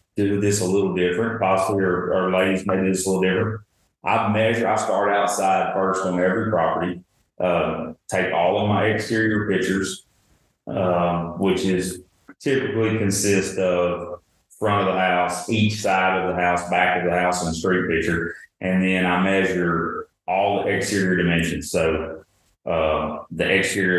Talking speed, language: 165 wpm, English